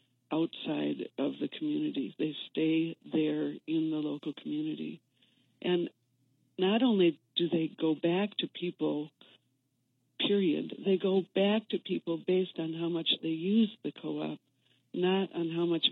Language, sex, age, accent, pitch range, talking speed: English, female, 60-79, American, 150-195 Hz, 145 wpm